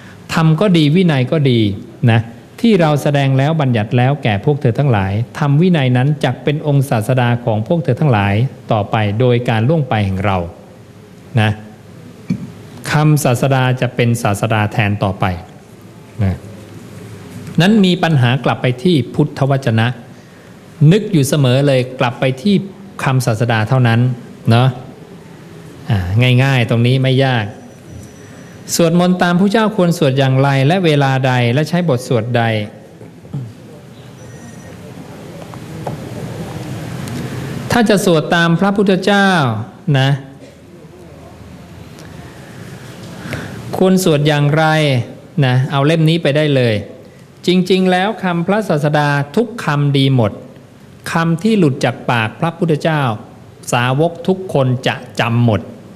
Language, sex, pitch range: English, male, 120-160 Hz